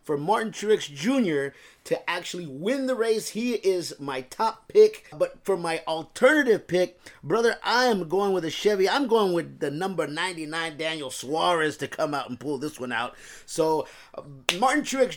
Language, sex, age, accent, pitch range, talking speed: English, male, 30-49, American, 140-195 Hz, 180 wpm